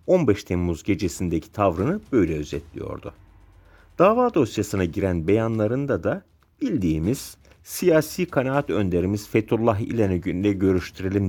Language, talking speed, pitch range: Turkish, 100 wpm, 85-125 Hz